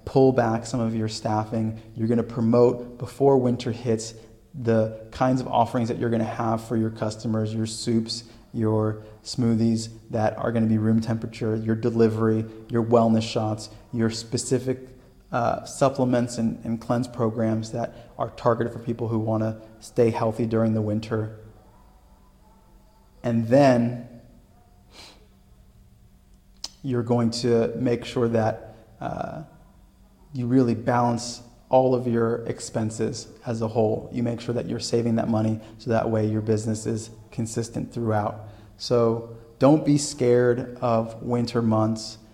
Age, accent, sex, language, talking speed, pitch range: 30-49, American, male, English, 145 wpm, 110-120 Hz